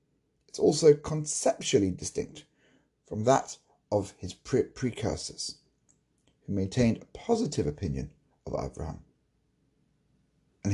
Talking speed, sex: 95 wpm, male